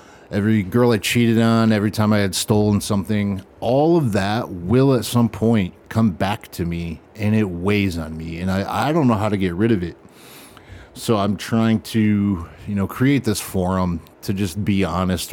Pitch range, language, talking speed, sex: 90-110 Hz, English, 200 wpm, male